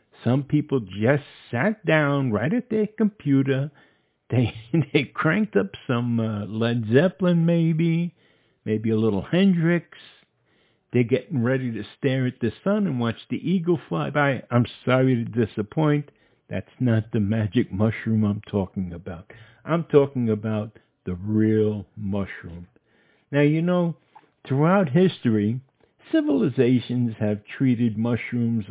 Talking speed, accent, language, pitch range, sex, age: 130 wpm, American, English, 110-165 Hz, male, 60-79